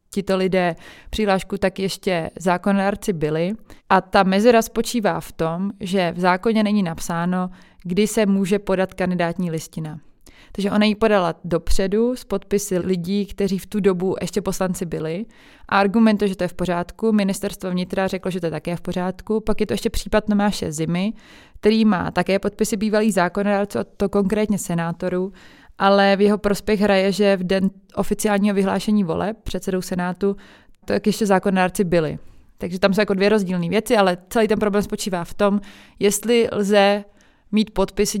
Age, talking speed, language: 20-39, 170 wpm, Czech